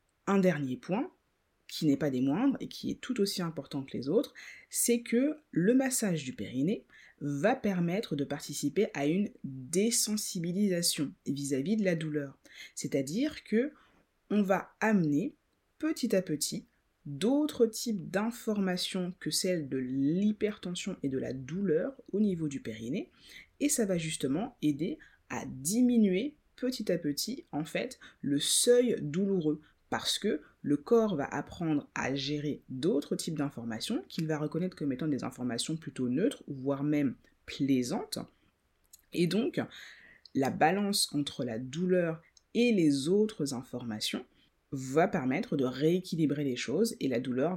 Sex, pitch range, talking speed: female, 140-205 Hz, 145 wpm